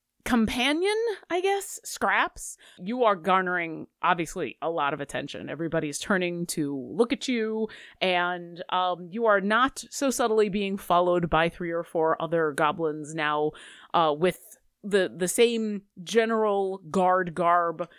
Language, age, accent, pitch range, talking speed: English, 30-49, American, 170-225 Hz, 140 wpm